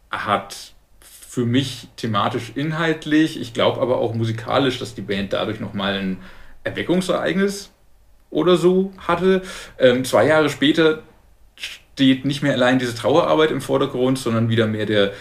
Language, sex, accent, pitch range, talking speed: German, male, German, 105-135 Hz, 140 wpm